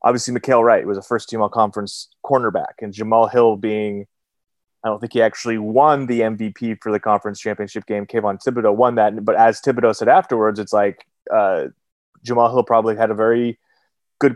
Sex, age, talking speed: male, 30-49, 190 wpm